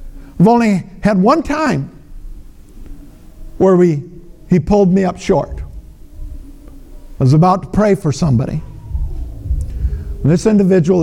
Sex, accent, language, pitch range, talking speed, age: male, American, English, 145-205 Hz, 110 wpm, 50-69